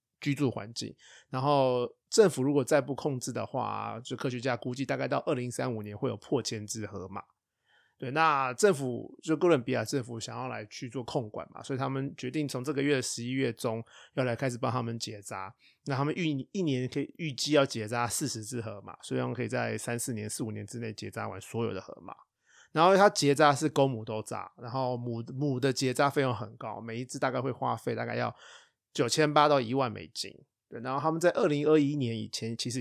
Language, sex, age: Chinese, male, 20-39